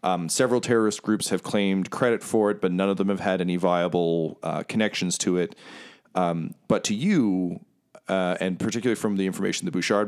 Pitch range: 90-105 Hz